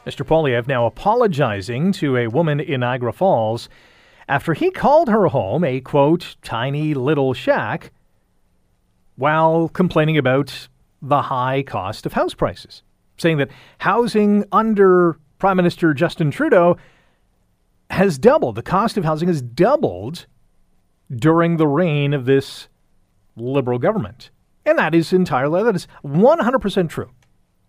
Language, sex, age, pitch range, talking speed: English, male, 40-59, 130-185 Hz, 130 wpm